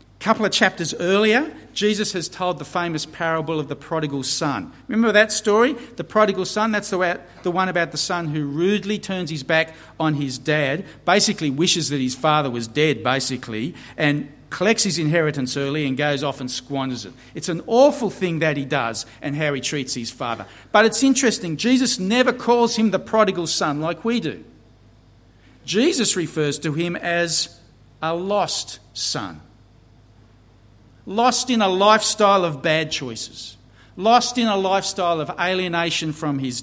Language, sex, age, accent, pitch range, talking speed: English, male, 50-69, Australian, 140-210 Hz, 170 wpm